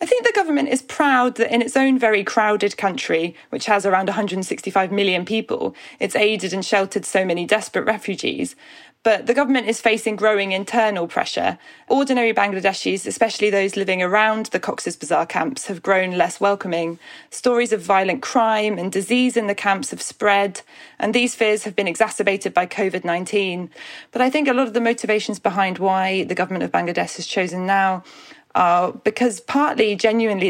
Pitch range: 180-220 Hz